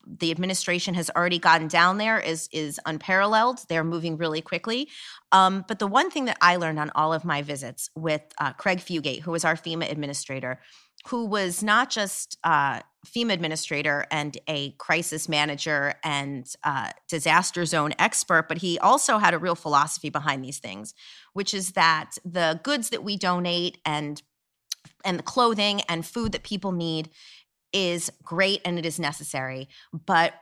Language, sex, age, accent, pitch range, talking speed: English, female, 30-49, American, 155-200 Hz, 170 wpm